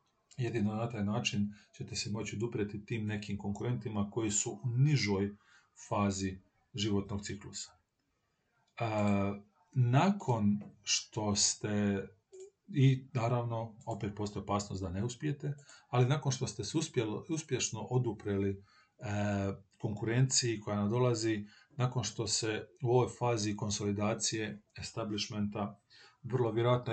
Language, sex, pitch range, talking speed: Croatian, male, 105-125 Hz, 115 wpm